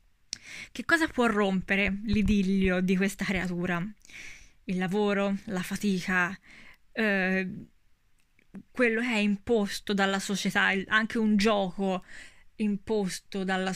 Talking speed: 105 wpm